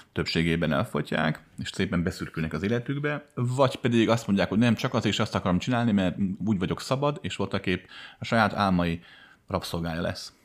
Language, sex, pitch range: Hungarian, male, 80-110 Hz